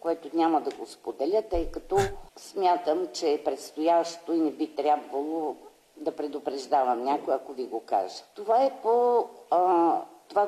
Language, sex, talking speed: Bulgarian, female, 155 wpm